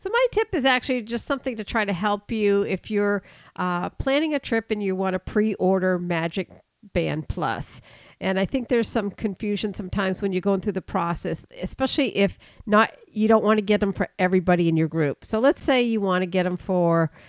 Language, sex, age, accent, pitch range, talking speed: English, female, 50-69, American, 170-220 Hz, 205 wpm